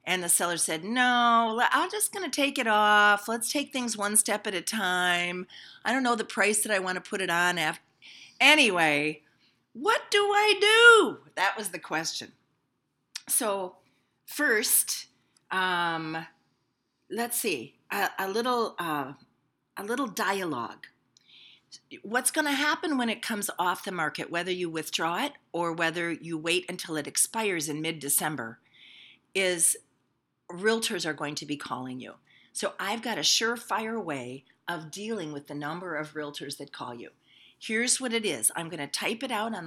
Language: English